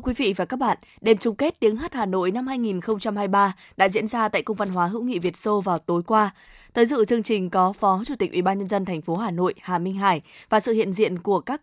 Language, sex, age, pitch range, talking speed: Vietnamese, female, 20-39, 190-235 Hz, 275 wpm